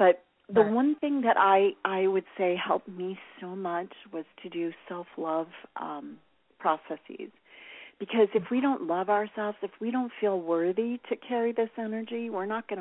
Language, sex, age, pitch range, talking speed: English, female, 40-59, 165-220 Hz, 175 wpm